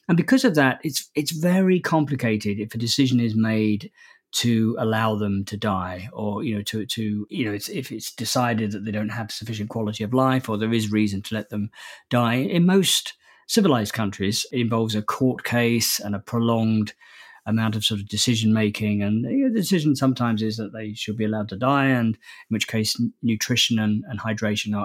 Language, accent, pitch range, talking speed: English, British, 105-135 Hz, 210 wpm